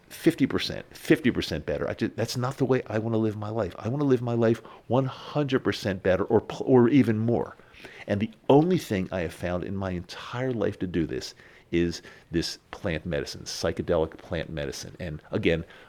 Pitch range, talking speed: 95-125 Hz, 205 wpm